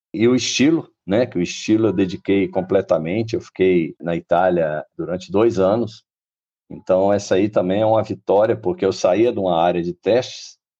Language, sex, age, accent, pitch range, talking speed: Portuguese, male, 50-69, Brazilian, 85-110 Hz, 180 wpm